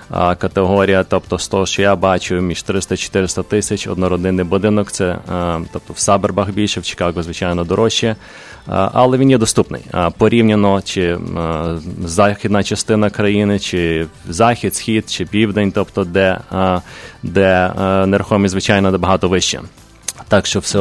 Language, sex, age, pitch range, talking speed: English, male, 20-39, 95-105 Hz, 135 wpm